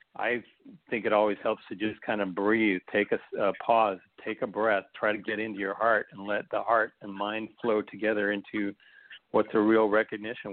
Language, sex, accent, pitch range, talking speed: English, male, American, 100-110 Hz, 205 wpm